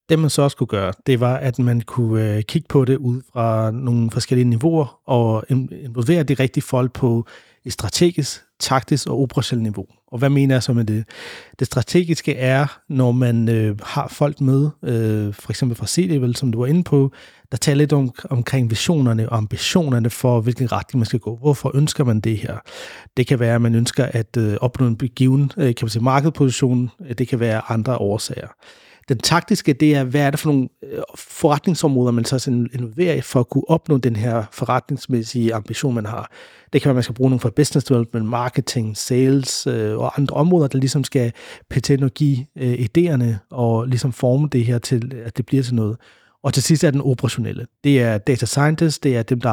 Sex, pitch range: male, 115-140 Hz